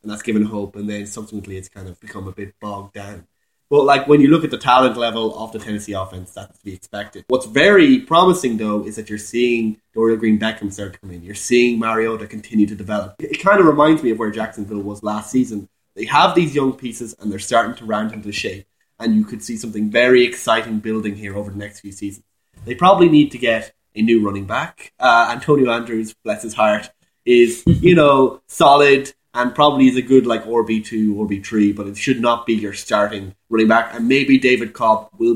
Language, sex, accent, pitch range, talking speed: English, male, Irish, 105-120 Hz, 225 wpm